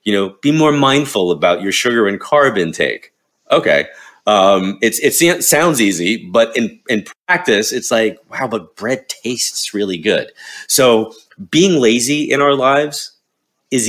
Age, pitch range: 30-49, 95-120 Hz